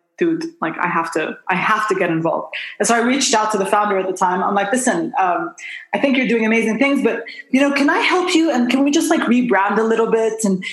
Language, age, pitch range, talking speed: English, 20-39, 185-230 Hz, 265 wpm